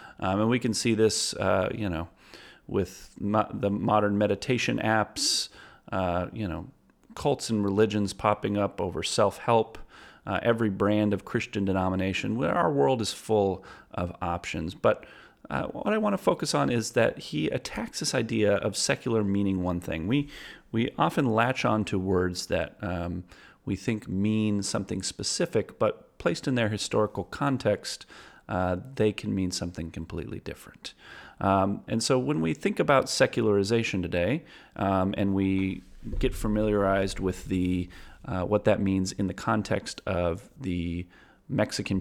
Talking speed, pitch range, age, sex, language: 155 wpm, 90-115 Hz, 40-59, male, English